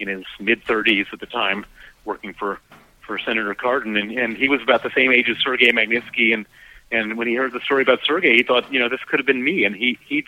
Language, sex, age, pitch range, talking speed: English, male, 40-59, 115-130 Hz, 265 wpm